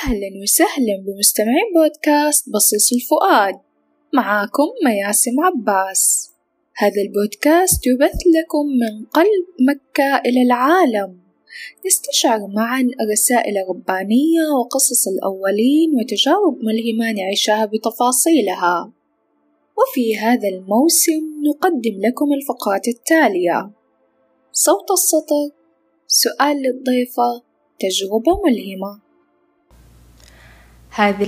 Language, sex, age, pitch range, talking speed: Arabic, female, 10-29, 205-300 Hz, 80 wpm